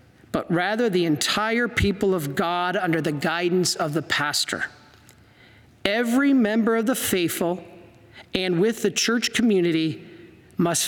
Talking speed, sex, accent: 130 wpm, male, American